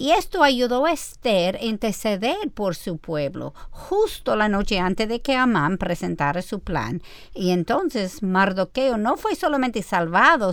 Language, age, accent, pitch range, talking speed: Spanish, 50-69, American, 185-265 Hz, 155 wpm